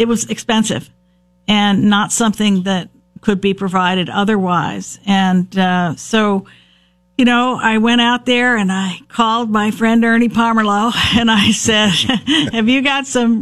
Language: English